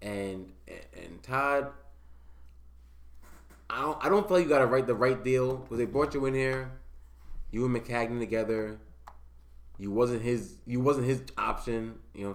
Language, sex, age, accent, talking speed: English, male, 20-39, American, 180 wpm